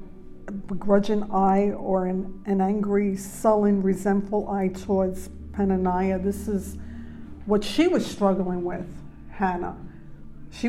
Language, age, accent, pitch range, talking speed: English, 50-69, American, 185-210 Hz, 120 wpm